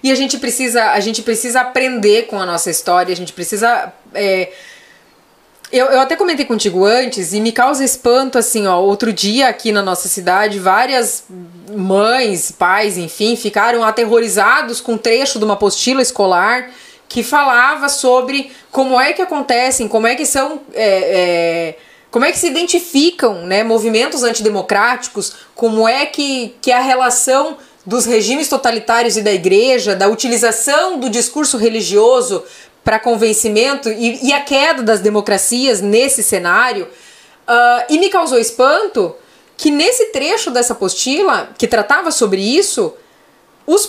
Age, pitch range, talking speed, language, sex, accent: 20-39, 220-330 Hz, 150 wpm, Portuguese, female, Brazilian